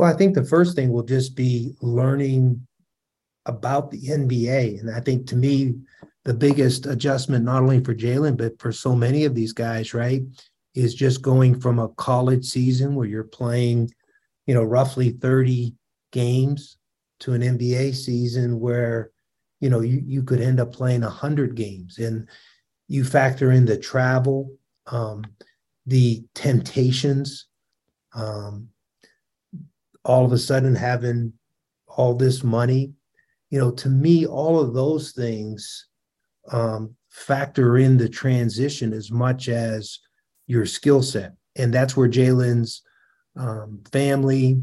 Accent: American